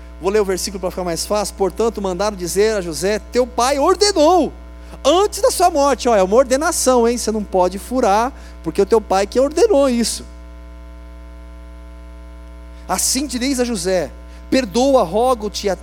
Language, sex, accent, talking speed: Portuguese, male, Brazilian, 165 wpm